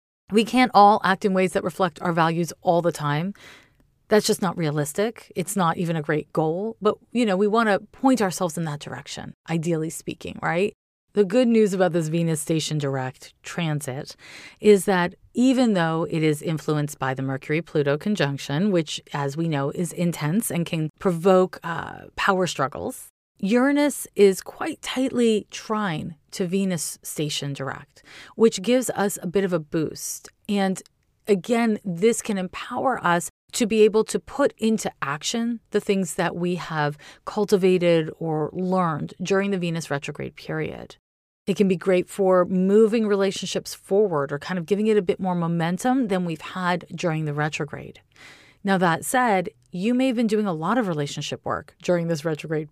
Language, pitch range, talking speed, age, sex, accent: English, 155-210 Hz, 170 wpm, 30-49, female, American